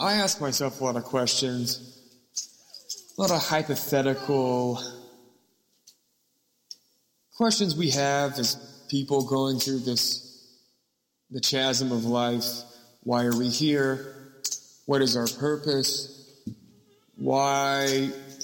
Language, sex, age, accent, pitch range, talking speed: English, male, 20-39, American, 130-160 Hz, 105 wpm